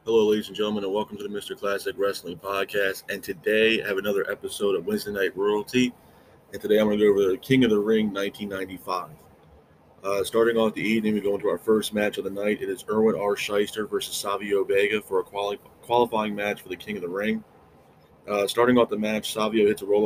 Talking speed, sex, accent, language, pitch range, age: 230 wpm, male, American, English, 100-115 Hz, 20-39